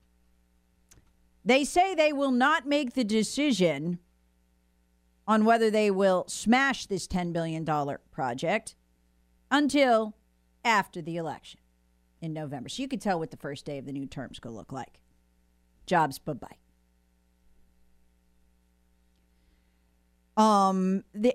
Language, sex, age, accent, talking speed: English, female, 40-59, American, 125 wpm